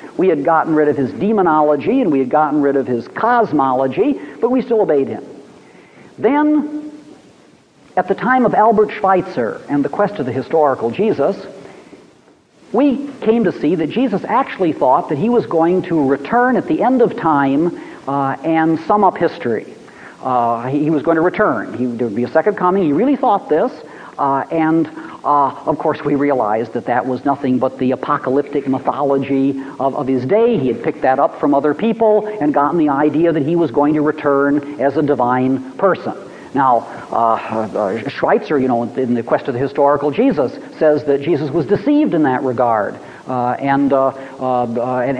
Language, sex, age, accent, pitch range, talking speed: English, male, 50-69, American, 135-215 Hz, 190 wpm